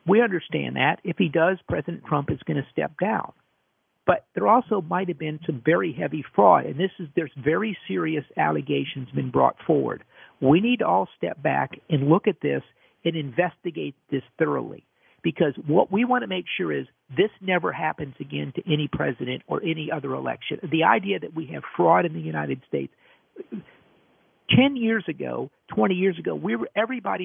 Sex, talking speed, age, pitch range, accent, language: male, 190 wpm, 50-69, 145-195 Hz, American, English